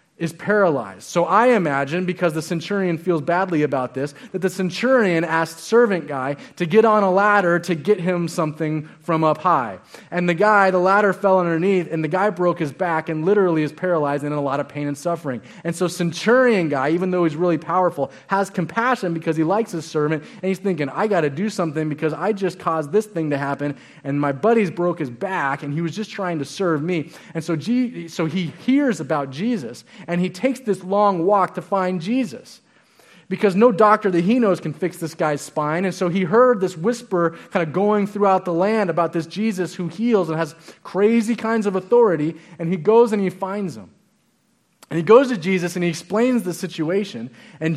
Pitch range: 160-200 Hz